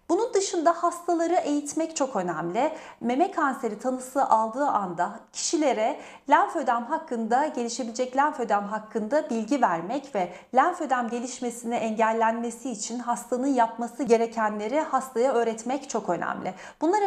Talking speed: 115 wpm